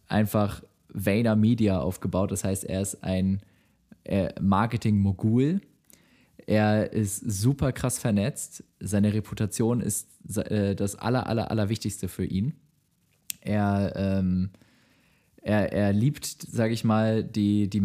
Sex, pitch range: male, 95-110 Hz